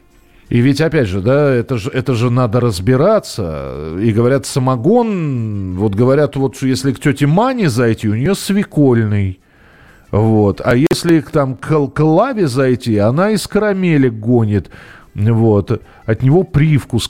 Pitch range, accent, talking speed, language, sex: 105-150 Hz, native, 145 wpm, Russian, male